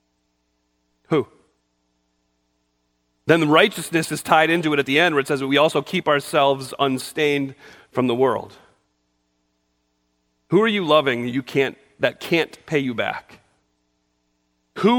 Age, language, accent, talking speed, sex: 40-59, English, American, 135 wpm, male